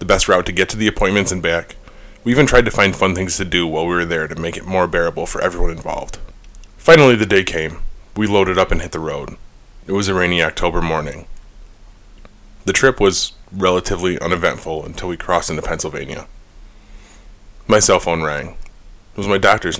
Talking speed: 200 wpm